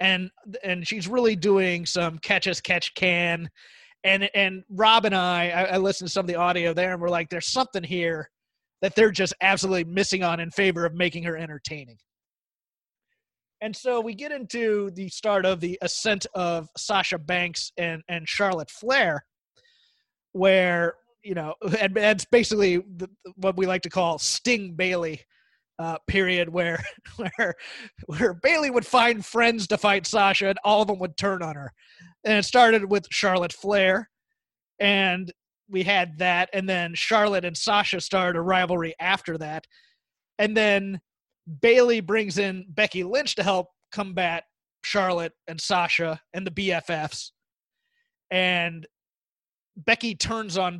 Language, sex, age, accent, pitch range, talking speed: English, male, 30-49, American, 175-210 Hz, 160 wpm